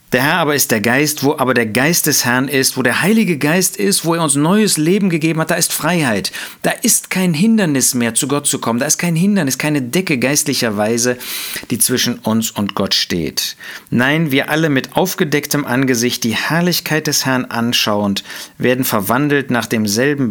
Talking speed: 190 wpm